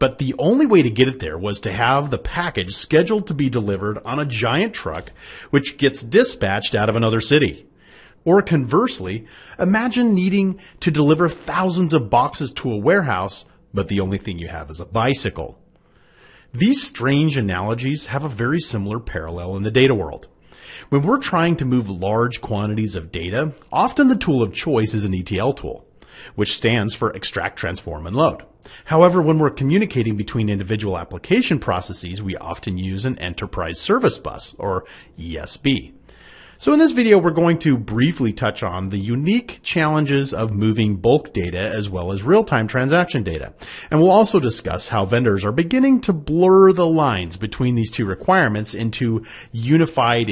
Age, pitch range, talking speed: 40-59, 100-160 Hz, 170 wpm